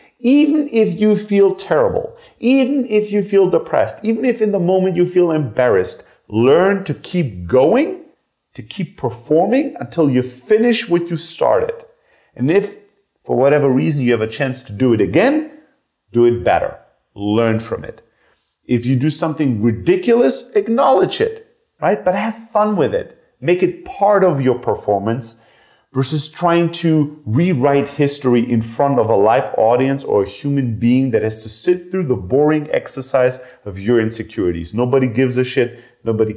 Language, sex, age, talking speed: English, male, 40-59, 165 wpm